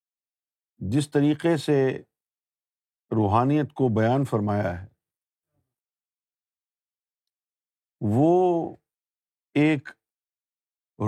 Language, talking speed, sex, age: Urdu, 55 wpm, male, 50-69